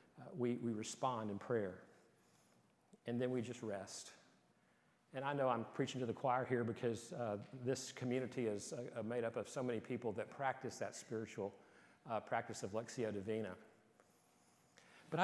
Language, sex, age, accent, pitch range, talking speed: English, male, 50-69, American, 110-135 Hz, 165 wpm